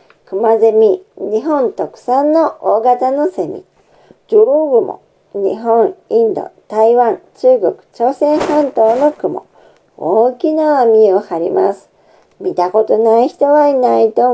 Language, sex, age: Japanese, male, 50-69